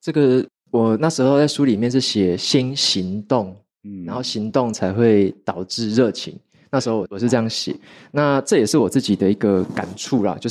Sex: male